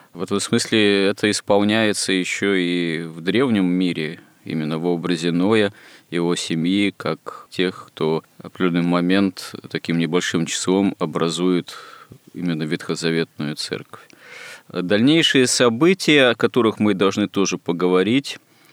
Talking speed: 120 wpm